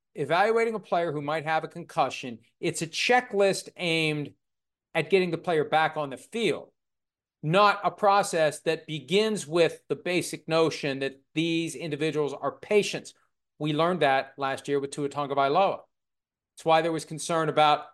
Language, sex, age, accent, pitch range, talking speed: English, male, 40-59, American, 140-165 Hz, 165 wpm